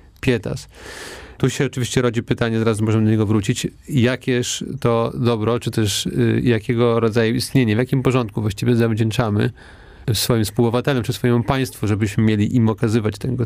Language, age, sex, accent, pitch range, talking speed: Polish, 40-59, male, native, 120-135 Hz, 150 wpm